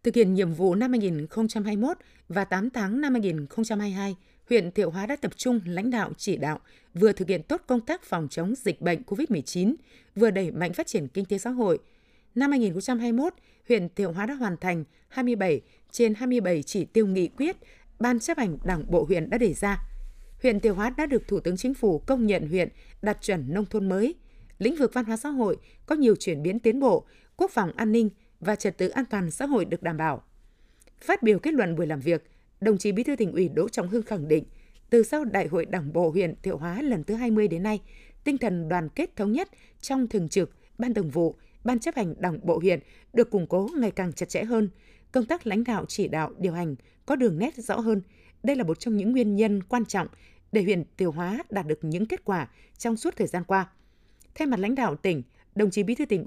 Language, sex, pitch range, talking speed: Vietnamese, female, 180-235 Hz, 225 wpm